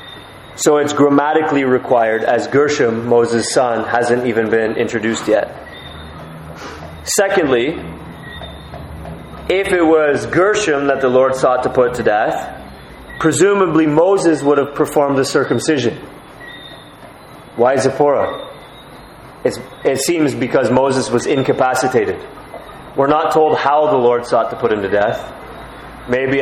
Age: 30-49